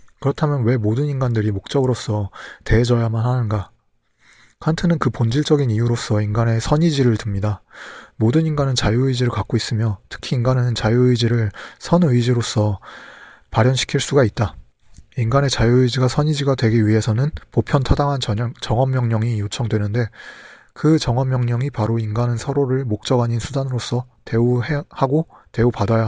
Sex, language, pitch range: male, Korean, 110-135 Hz